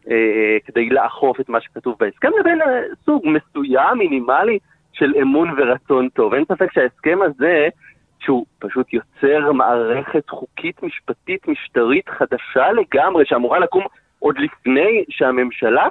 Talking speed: 125 wpm